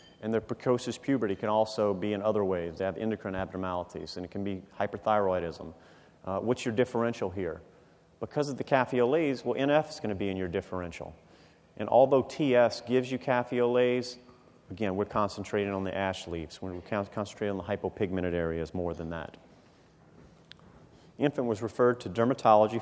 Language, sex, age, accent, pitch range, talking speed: English, male, 40-59, American, 95-120 Hz, 170 wpm